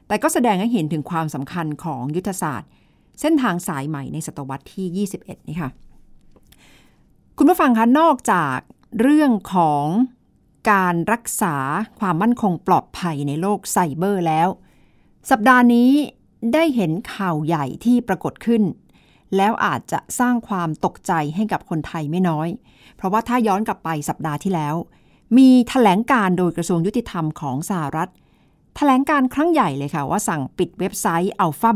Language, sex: Thai, female